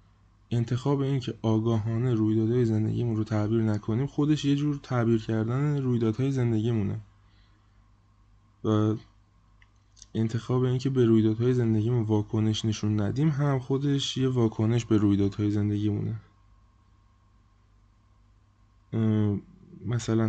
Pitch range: 105-120 Hz